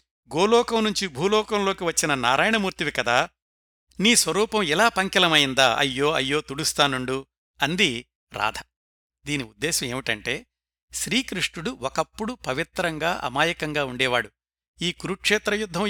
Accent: native